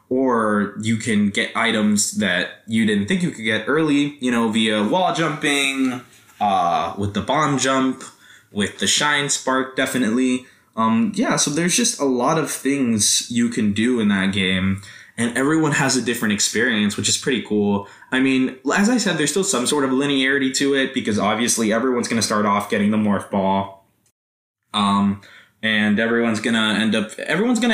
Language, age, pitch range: English, 20-39, 105-135 Hz